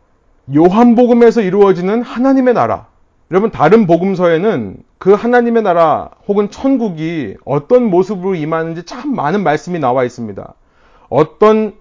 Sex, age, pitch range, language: male, 30-49, 165-230 Hz, Korean